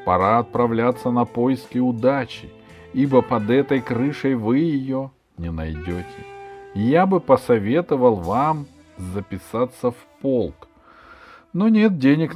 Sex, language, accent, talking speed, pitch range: male, Russian, native, 110 wpm, 100-140 Hz